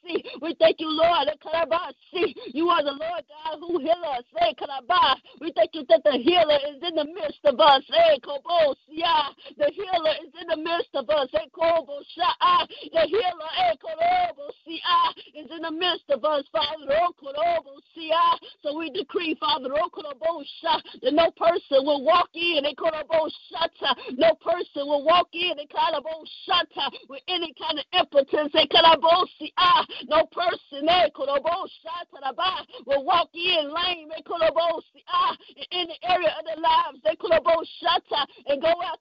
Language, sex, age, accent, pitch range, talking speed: English, female, 50-69, American, 300-345 Hz, 170 wpm